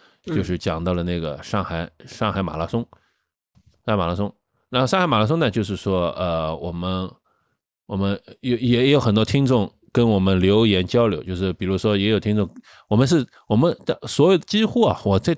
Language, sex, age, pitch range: Chinese, male, 20-39, 95-135 Hz